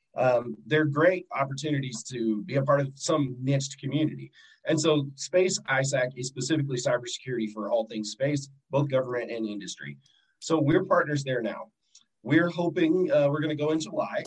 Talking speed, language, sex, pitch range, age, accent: 175 wpm, English, male, 120-155 Hz, 30-49, American